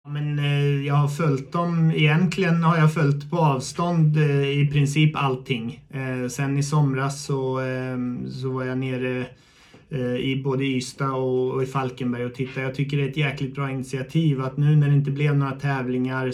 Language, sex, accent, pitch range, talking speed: Swedish, male, native, 125-145 Hz, 190 wpm